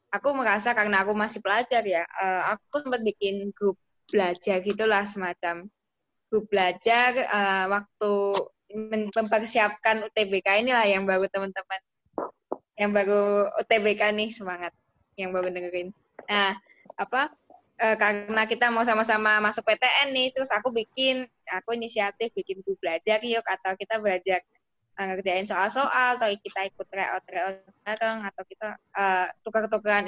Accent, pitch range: native, 200-240 Hz